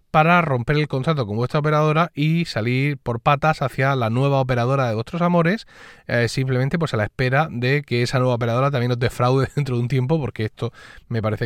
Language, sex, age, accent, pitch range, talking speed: Spanish, male, 30-49, Spanish, 120-165 Hz, 210 wpm